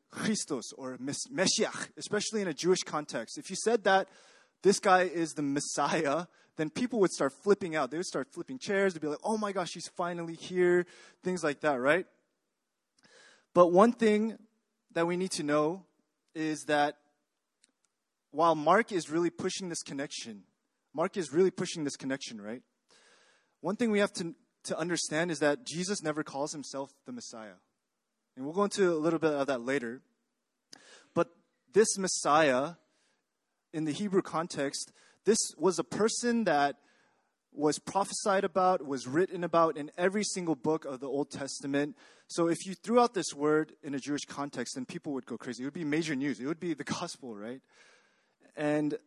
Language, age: English, 20-39